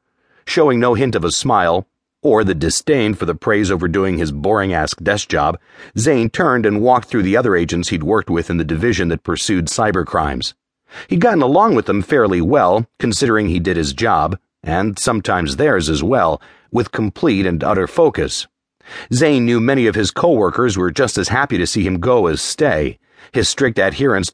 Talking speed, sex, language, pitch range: 185 wpm, male, English, 90-115 Hz